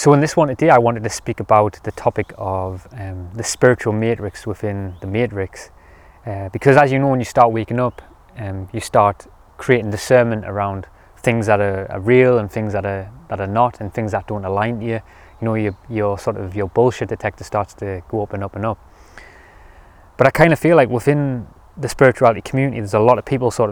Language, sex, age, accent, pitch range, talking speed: English, male, 20-39, British, 95-115 Hz, 225 wpm